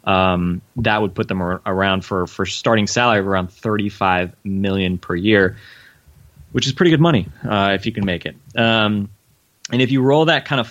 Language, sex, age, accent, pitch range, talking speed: English, male, 20-39, American, 100-115 Hz, 200 wpm